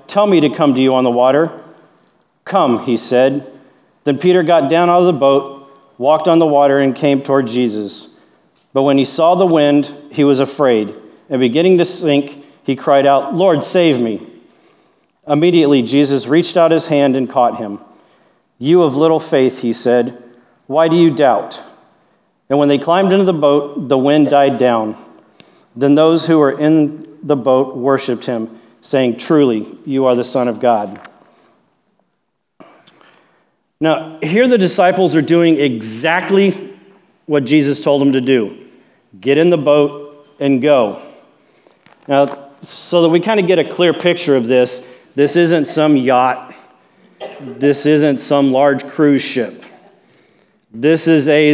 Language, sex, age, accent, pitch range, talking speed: English, male, 40-59, American, 130-160 Hz, 160 wpm